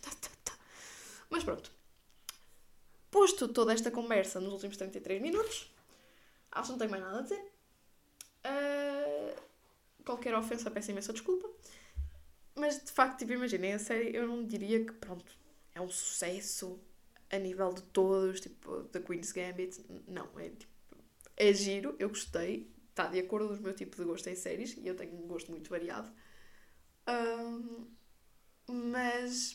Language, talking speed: Portuguese, 150 wpm